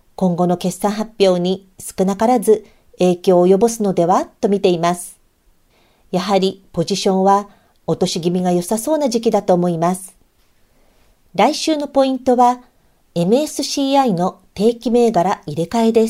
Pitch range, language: 180-245 Hz, Japanese